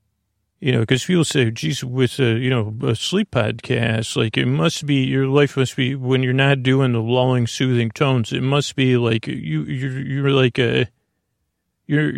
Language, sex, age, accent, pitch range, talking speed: English, male, 40-59, American, 120-140 Hz, 190 wpm